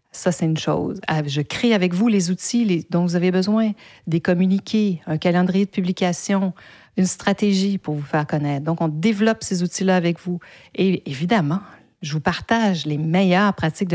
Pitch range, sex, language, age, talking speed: 155-195 Hz, female, French, 50-69, 175 wpm